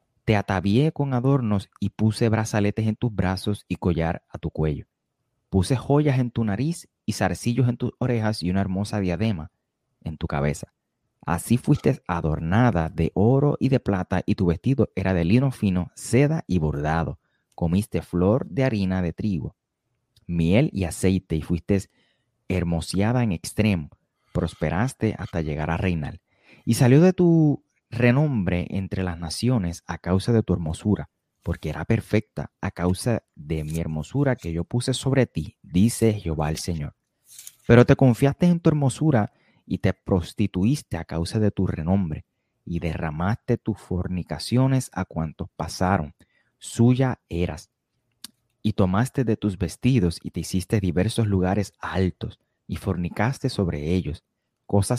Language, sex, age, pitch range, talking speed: Spanish, male, 30-49, 85-120 Hz, 150 wpm